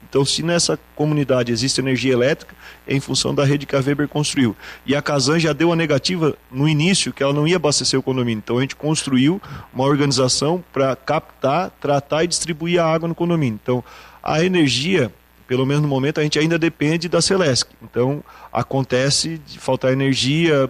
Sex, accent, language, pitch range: male, Brazilian, Portuguese, 130-155 Hz